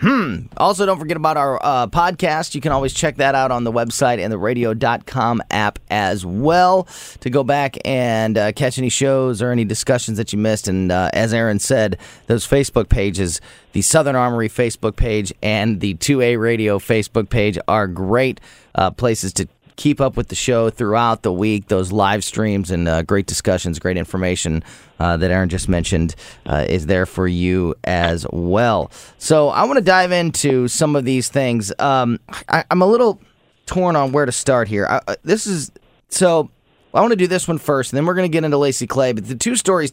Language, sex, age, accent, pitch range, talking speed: English, male, 30-49, American, 105-140 Hz, 200 wpm